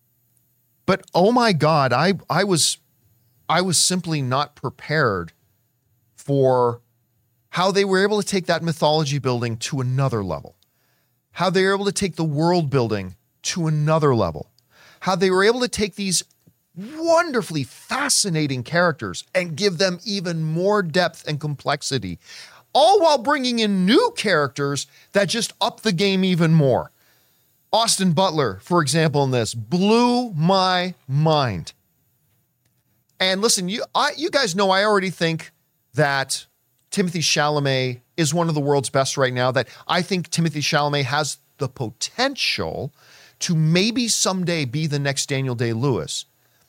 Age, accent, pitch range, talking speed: 40-59, American, 130-190 Hz, 145 wpm